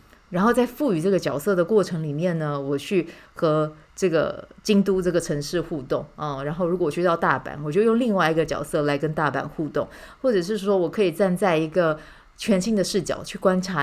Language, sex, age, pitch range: Chinese, female, 20-39, 155-195 Hz